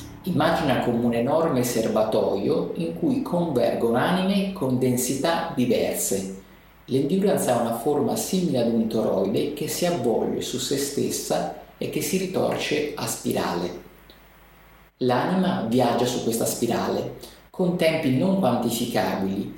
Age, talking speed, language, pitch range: 50-69, 125 wpm, Italian, 115-170 Hz